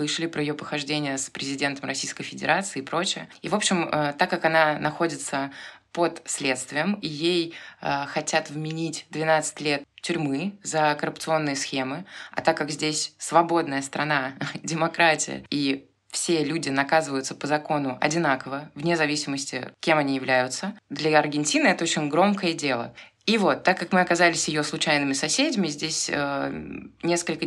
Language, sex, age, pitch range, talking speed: Russian, female, 20-39, 145-175 Hz, 150 wpm